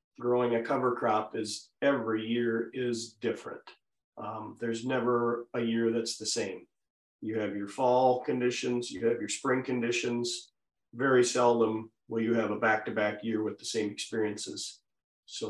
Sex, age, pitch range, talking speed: male, 40-59, 105-120 Hz, 155 wpm